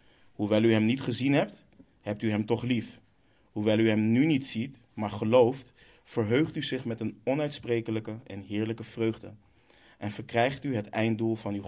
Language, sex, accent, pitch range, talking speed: Dutch, male, Dutch, 105-120 Hz, 180 wpm